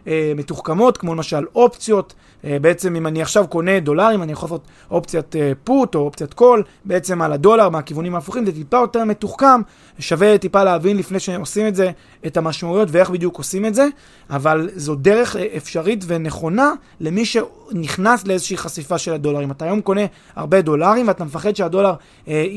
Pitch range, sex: 155-210 Hz, male